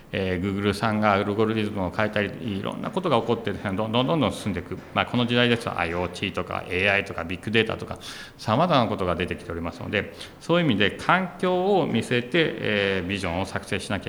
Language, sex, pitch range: Japanese, male, 90-120 Hz